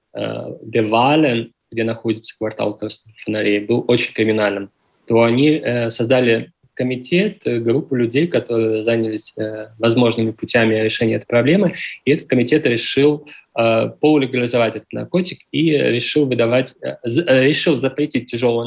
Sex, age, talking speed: male, 20-39, 115 wpm